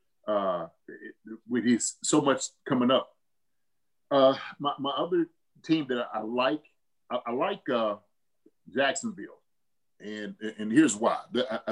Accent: American